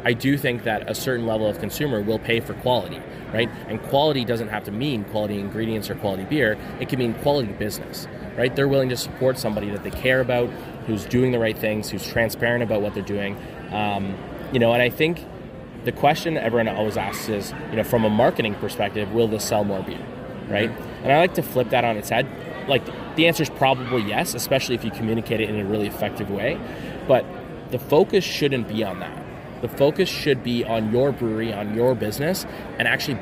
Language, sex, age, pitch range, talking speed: French, male, 20-39, 105-130 Hz, 215 wpm